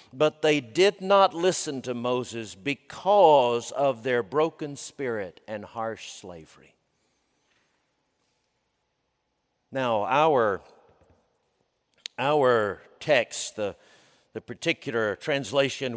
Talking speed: 85 wpm